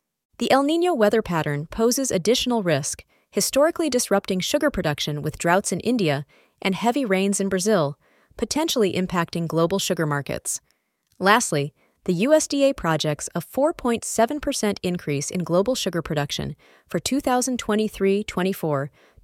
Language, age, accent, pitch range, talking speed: English, 30-49, American, 165-245 Hz, 120 wpm